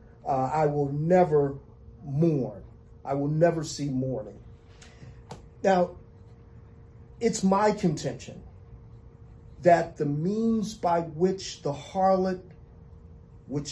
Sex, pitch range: male, 120-185 Hz